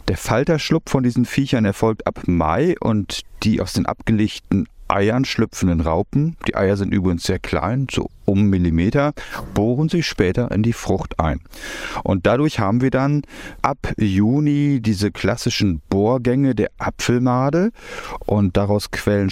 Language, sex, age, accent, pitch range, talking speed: German, male, 40-59, German, 90-120 Hz, 145 wpm